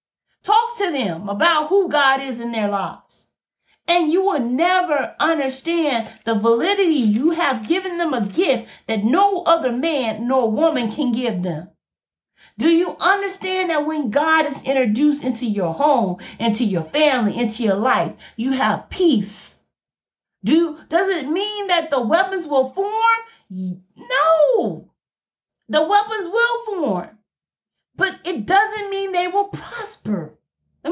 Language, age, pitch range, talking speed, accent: English, 40-59, 230-375 Hz, 140 wpm, American